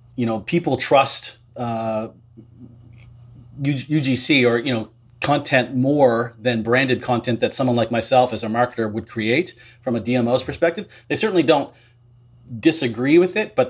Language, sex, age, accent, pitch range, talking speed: English, male, 30-49, American, 115-130 Hz, 150 wpm